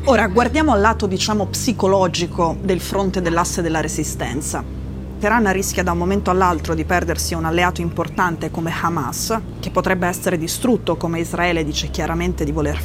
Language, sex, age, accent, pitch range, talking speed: Italian, female, 20-39, native, 160-200 Hz, 160 wpm